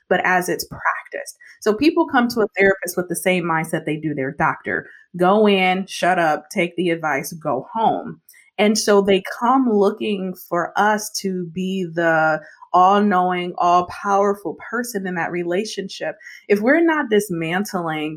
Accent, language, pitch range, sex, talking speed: American, English, 175-215 Hz, female, 155 wpm